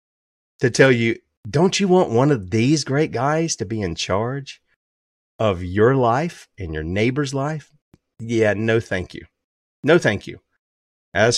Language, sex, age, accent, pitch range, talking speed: English, male, 40-59, American, 105-155 Hz, 160 wpm